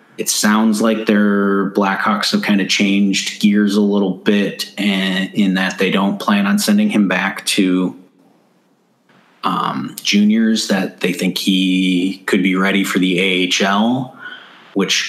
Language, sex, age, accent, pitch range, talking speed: English, male, 30-49, American, 90-100 Hz, 145 wpm